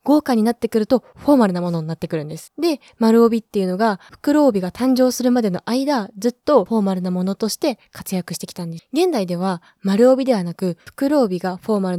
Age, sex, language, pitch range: 20-39, female, Japanese, 185-255 Hz